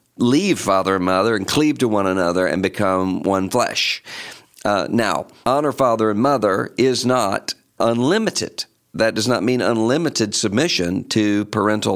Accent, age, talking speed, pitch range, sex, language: American, 50-69, 150 wpm, 100-125 Hz, male, English